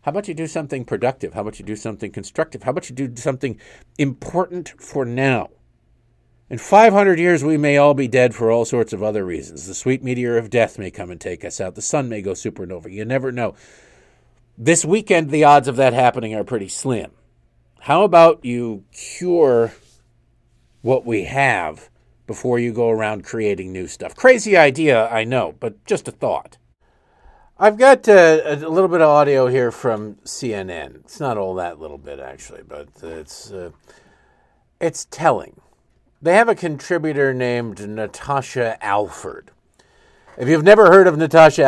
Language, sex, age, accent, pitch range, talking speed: English, male, 50-69, American, 105-150 Hz, 175 wpm